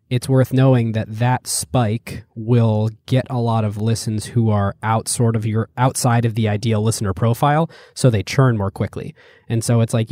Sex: male